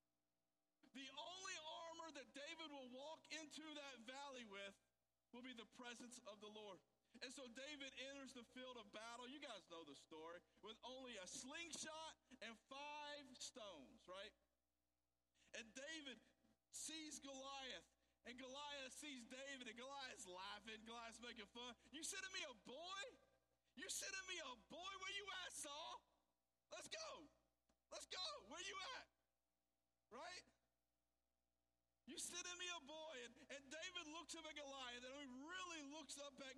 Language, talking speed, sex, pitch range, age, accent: English, 155 wpm, male, 240-320 Hz, 50-69, American